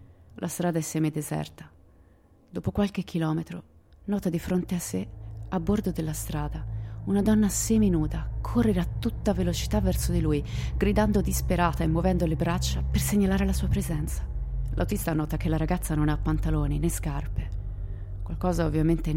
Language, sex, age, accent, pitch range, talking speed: Italian, female, 30-49, native, 105-170 Hz, 155 wpm